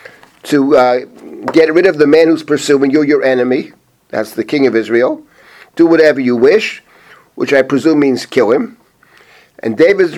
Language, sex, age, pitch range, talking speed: English, male, 50-69, 130-170 Hz, 170 wpm